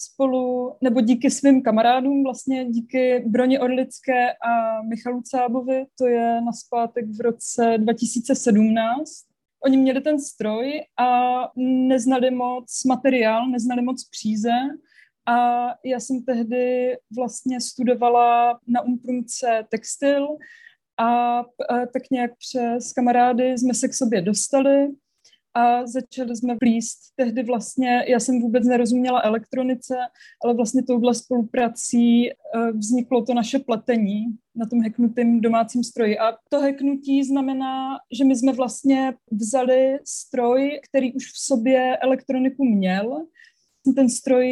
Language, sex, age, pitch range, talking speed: Czech, female, 20-39, 235-260 Hz, 120 wpm